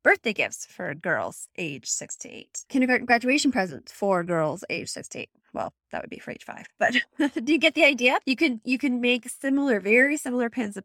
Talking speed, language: 220 wpm, English